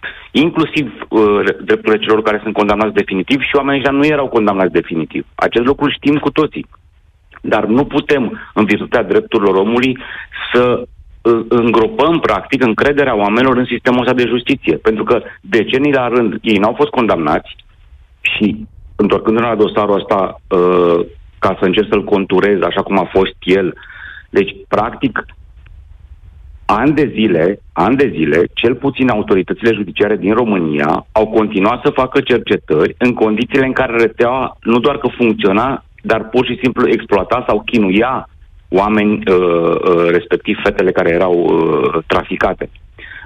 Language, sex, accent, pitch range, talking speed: Romanian, male, native, 95-125 Hz, 145 wpm